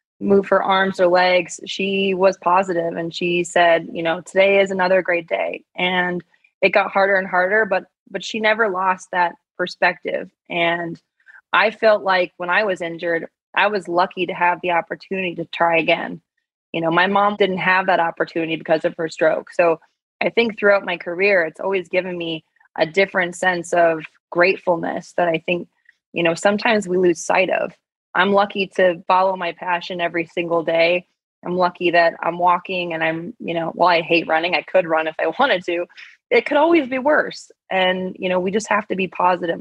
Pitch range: 170-190 Hz